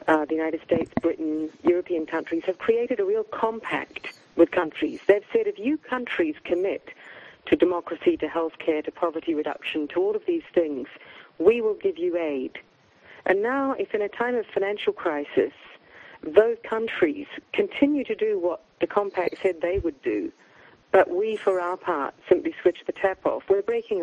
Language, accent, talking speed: English, British, 175 wpm